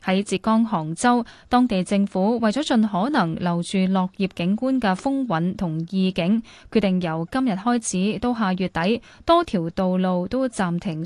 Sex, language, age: female, Chinese, 10-29